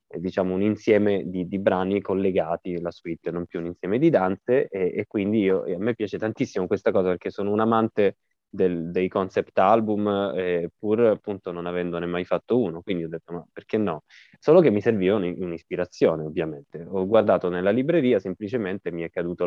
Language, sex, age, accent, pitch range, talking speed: Italian, male, 20-39, native, 85-120 Hz, 195 wpm